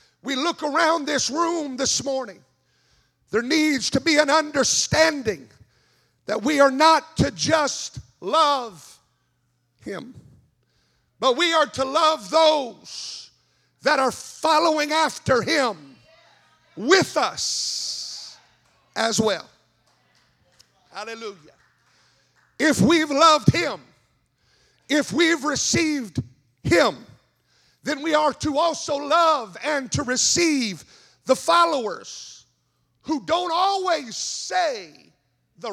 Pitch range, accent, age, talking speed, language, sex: 215-320 Hz, American, 50-69, 100 wpm, English, male